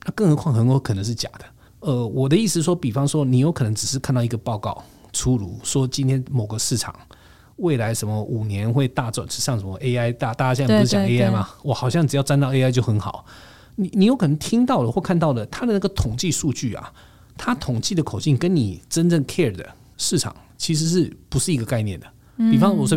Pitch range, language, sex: 115-145 Hz, Chinese, male